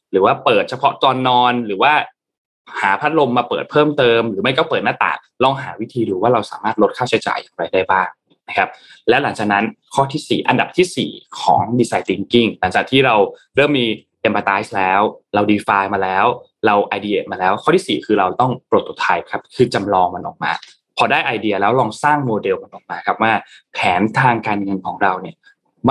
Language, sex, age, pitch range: Thai, male, 20-39, 100-150 Hz